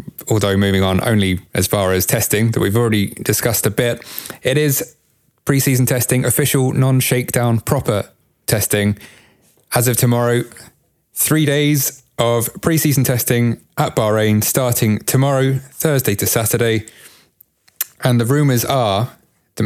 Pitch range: 100-125 Hz